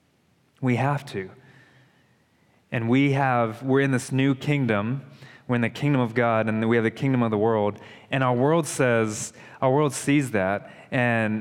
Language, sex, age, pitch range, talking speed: English, male, 20-39, 110-135 Hz, 180 wpm